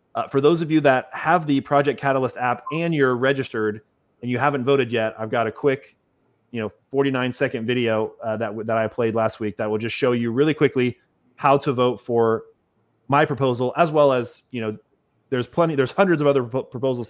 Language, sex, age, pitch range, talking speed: English, male, 30-49, 115-140 Hz, 210 wpm